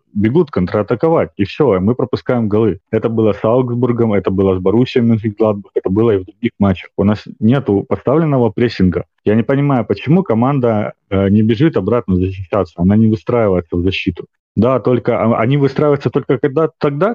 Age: 30-49